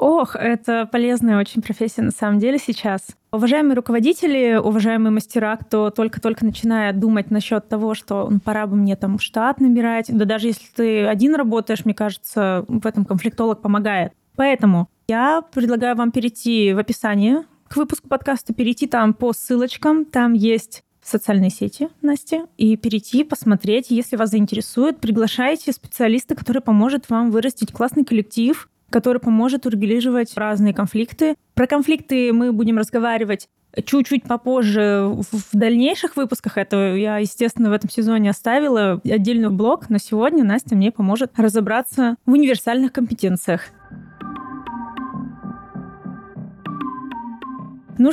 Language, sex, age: Russian, female, 20-39